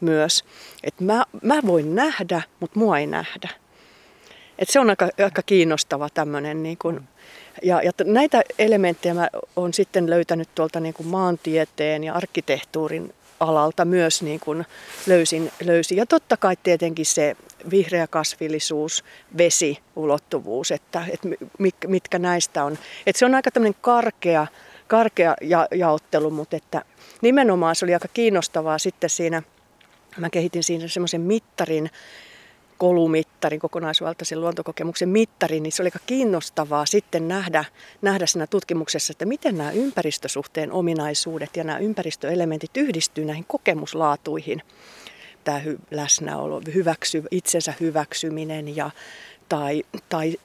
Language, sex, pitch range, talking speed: Finnish, female, 155-185 Hz, 130 wpm